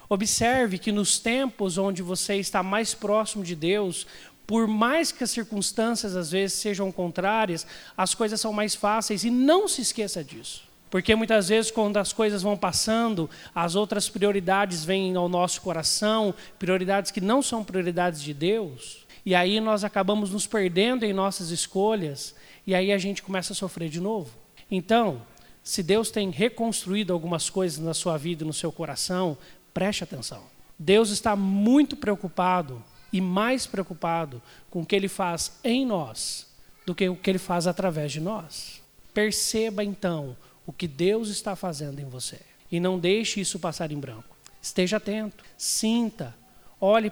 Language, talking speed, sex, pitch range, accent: Portuguese, 165 wpm, male, 175-215 Hz, Brazilian